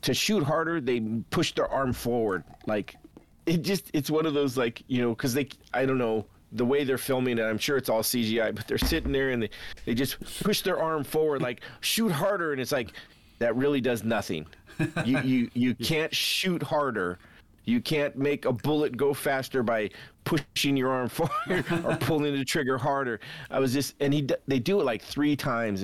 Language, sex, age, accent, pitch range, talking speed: English, male, 40-59, American, 105-140 Hz, 205 wpm